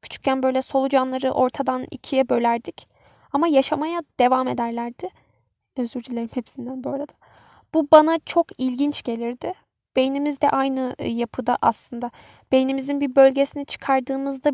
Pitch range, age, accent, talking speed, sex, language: 250-280 Hz, 10-29, native, 120 wpm, female, Turkish